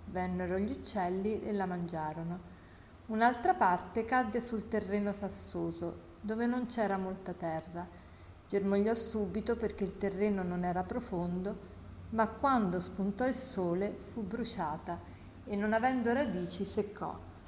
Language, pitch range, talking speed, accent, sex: Italian, 180-230 Hz, 125 wpm, native, female